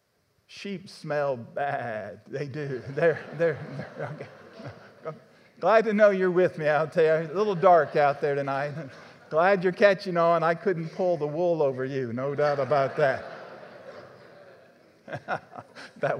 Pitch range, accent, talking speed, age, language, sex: 140-185 Hz, American, 150 wpm, 50-69, English, male